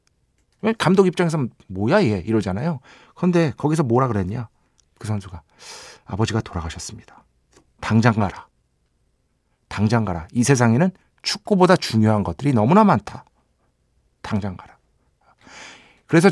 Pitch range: 110-160 Hz